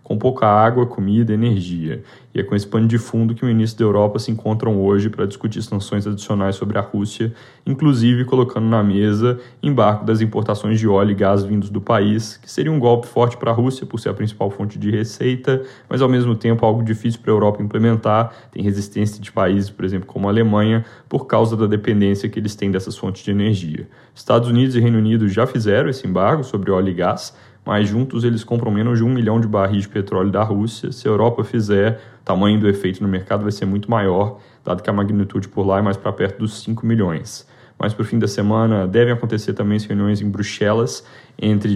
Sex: male